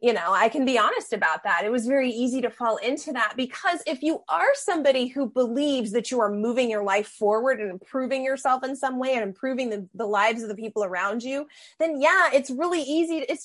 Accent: American